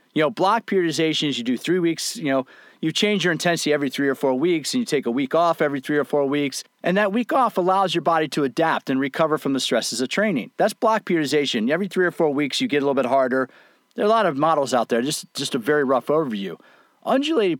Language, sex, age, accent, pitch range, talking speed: English, male, 40-59, American, 145-205 Hz, 260 wpm